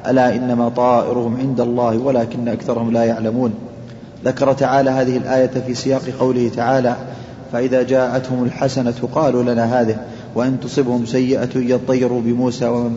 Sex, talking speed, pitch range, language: male, 135 wpm, 120-140 Hz, Arabic